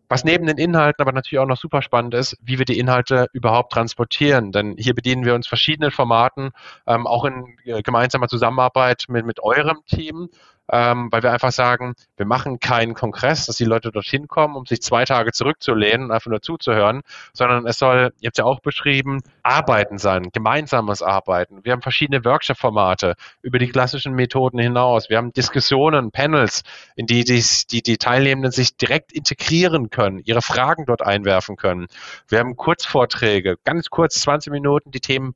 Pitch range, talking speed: 110-135 Hz, 180 wpm